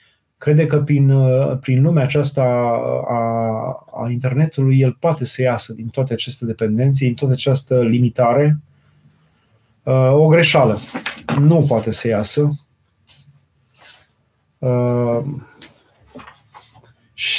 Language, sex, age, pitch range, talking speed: Romanian, male, 30-49, 125-150 Hz, 105 wpm